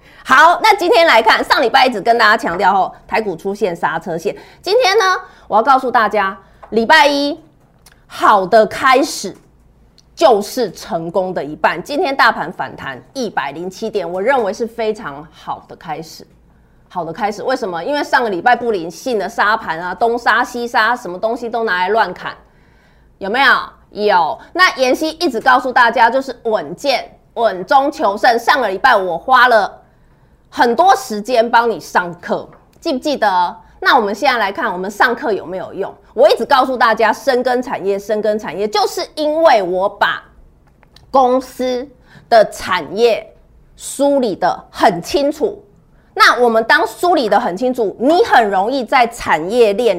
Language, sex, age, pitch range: Chinese, female, 30-49, 215-290 Hz